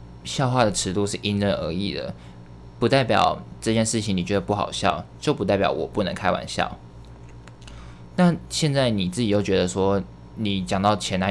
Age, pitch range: 20-39, 90-105 Hz